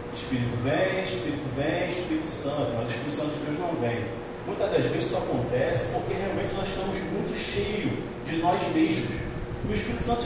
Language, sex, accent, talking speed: Portuguese, male, Brazilian, 180 wpm